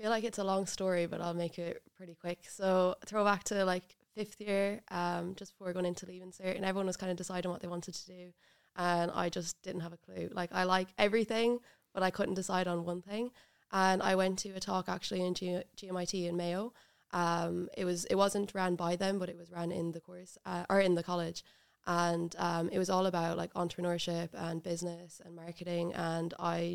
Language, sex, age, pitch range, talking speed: English, female, 20-39, 170-185 Hz, 230 wpm